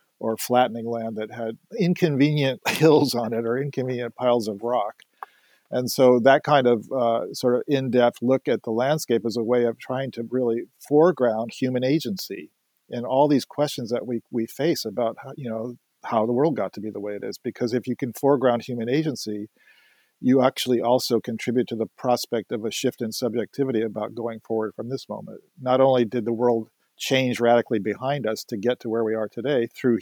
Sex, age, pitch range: male, 50-69, 115-130 Hz